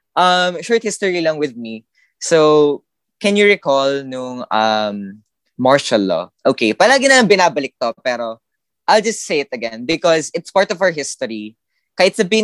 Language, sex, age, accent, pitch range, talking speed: Filipino, female, 20-39, native, 115-175 Hz, 160 wpm